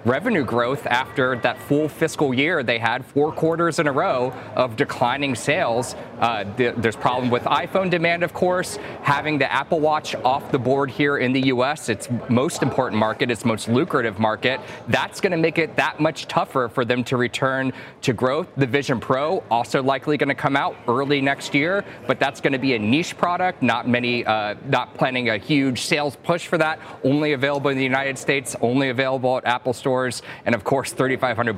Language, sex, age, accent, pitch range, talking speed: English, male, 30-49, American, 125-155 Hz, 200 wpm